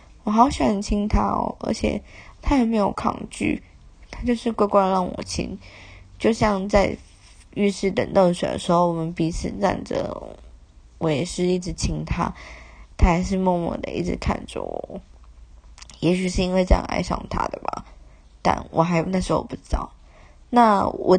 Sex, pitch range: female, 165-210 Hz